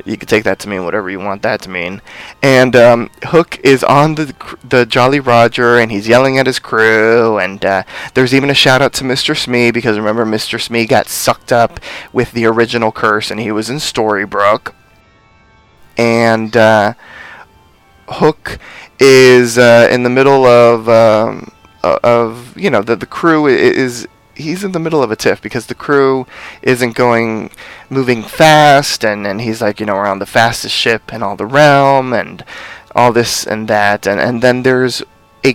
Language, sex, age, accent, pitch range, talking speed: English, male, 20-39, American, 110-130 Hz, 185 wpm